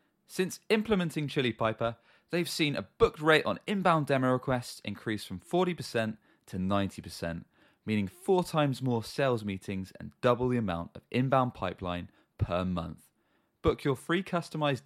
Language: English